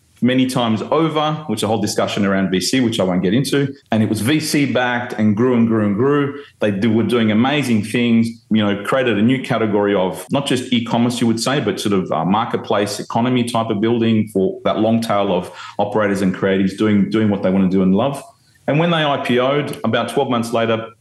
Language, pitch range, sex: English, 100-125 Hz, male